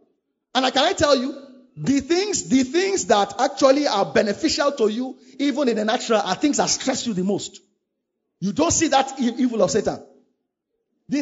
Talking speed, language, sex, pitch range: 185 wpm, English, male, 225-335 Hz